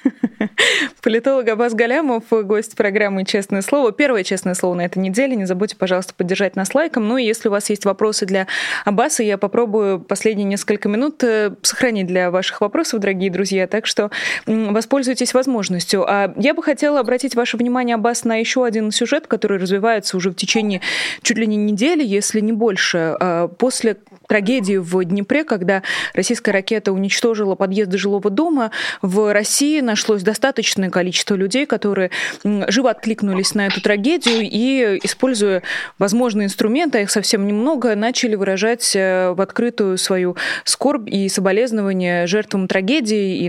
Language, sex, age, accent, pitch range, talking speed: Russian, female, 20-39, native, 195-235 Hz, 150 wpm